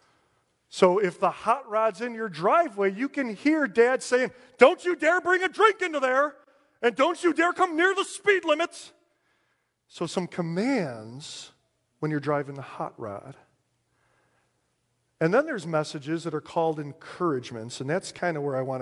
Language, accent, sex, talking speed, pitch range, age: English, American, male, 170 wpm, 125-175 Hz, 40-59